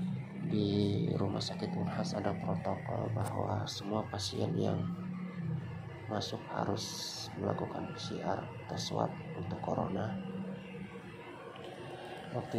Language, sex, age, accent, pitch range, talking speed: Indonesian, male, 30-49, native, 105-125 Hz, 85 wpm